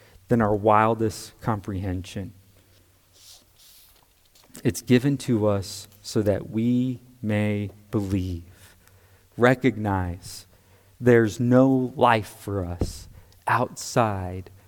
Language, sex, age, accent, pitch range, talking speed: English, male, 40-59, American, 100-125 Hz, 80 wpm